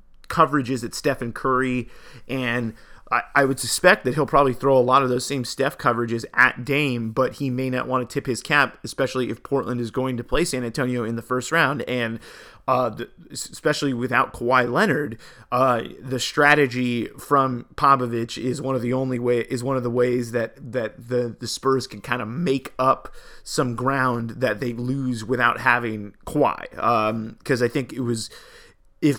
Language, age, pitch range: English, 30-49, 120-130 Hz